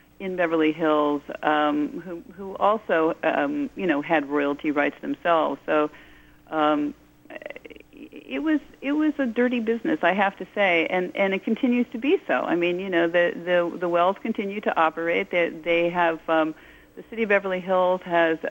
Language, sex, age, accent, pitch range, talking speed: English, female, 50-69, American, 155-200 Hz, 180 wpm